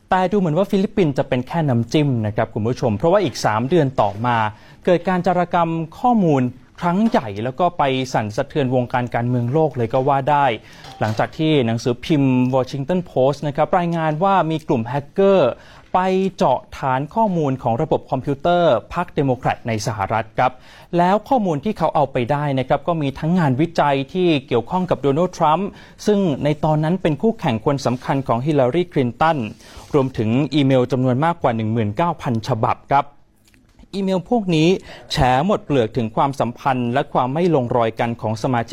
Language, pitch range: Thai, 125-160 Hz